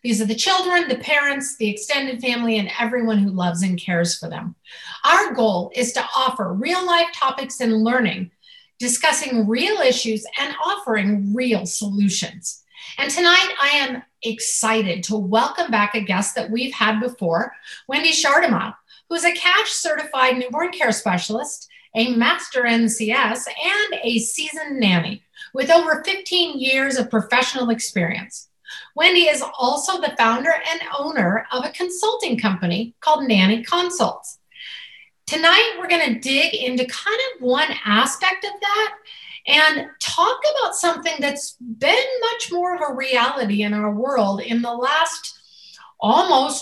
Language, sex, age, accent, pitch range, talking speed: English, female, 40-59, American, 220-315 Hz, 150 wpm